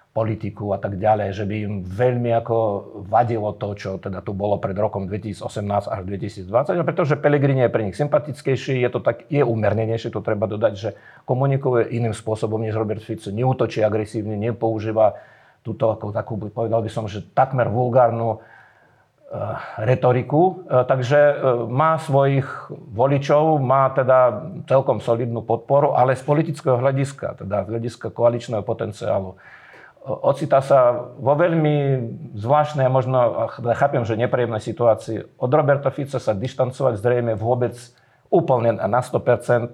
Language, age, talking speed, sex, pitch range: Slovak, 50-69, 145 wpm, male, 110-135 Hz